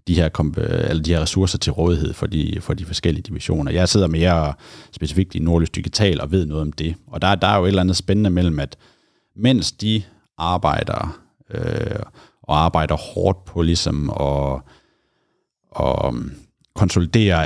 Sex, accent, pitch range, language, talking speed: male, native, 80-100 Hz, Danish, 165 wpm